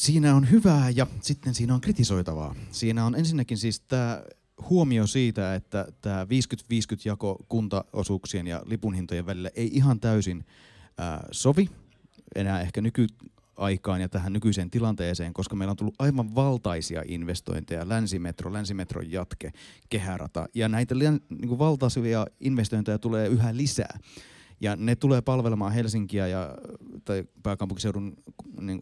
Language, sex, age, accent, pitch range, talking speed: Finnish, male, 30-49, native, 95-120 Hz, 125 wpm